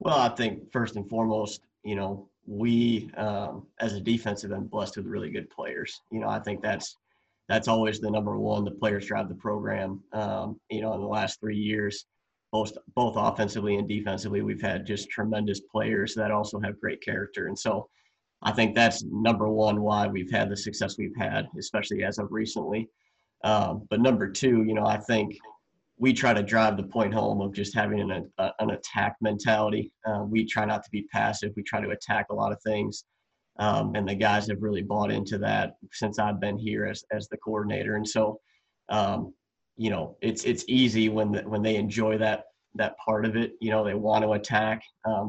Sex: male